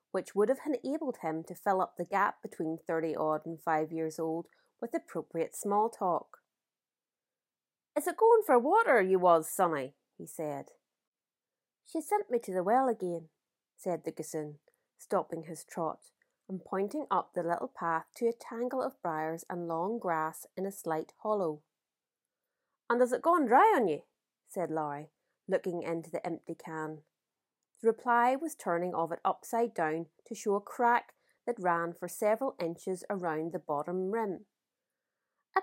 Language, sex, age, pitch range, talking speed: English, female, 30-49, 165-250 Hz, 160 wpm